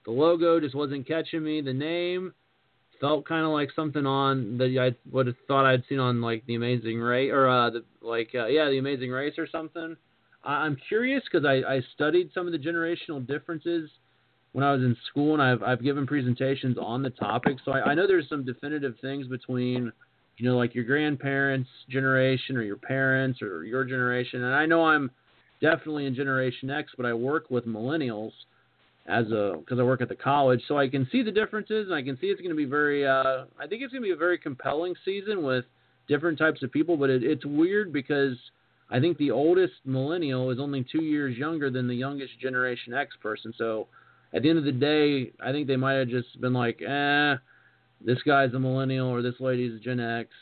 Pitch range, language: 125-150 Hz, English